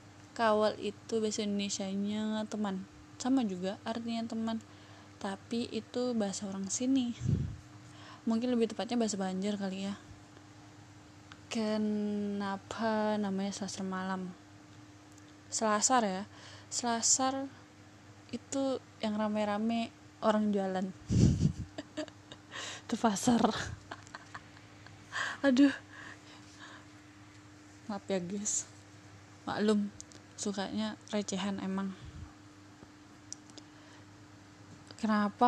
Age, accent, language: 20-39, native, Indonesian